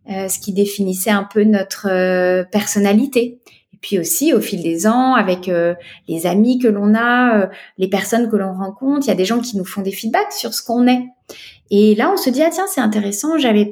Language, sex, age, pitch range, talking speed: French, female, 20-39, 200-245 Hz, 230 wpm